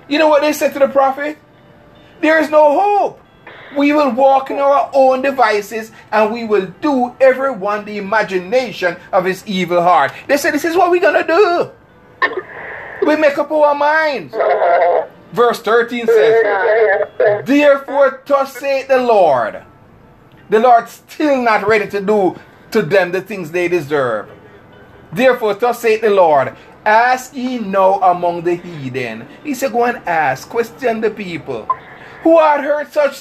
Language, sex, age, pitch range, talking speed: English, male, 30-49, 205-285 Hz, 155 wpm